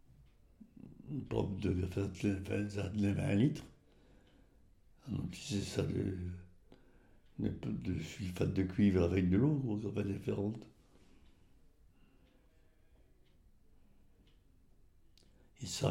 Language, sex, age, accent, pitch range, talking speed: French, male, 60-79, French, 95-110 Hz, 85 wpm